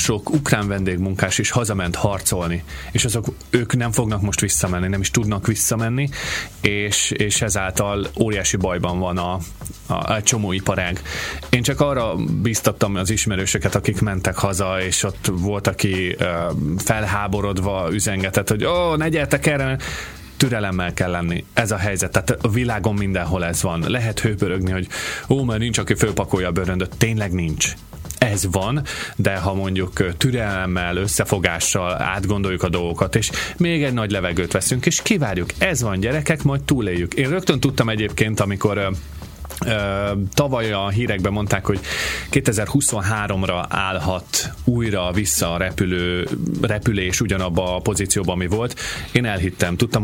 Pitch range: 95-115 Hz